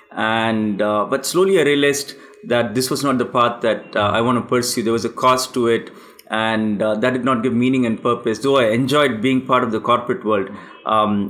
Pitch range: 110-130 Hz